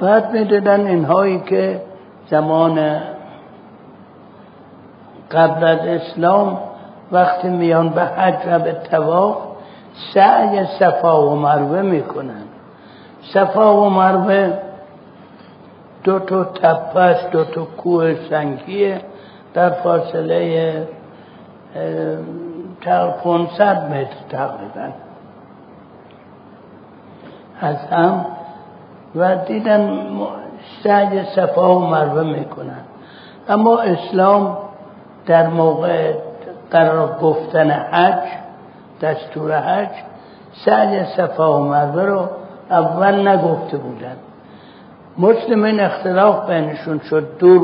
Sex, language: male, Persian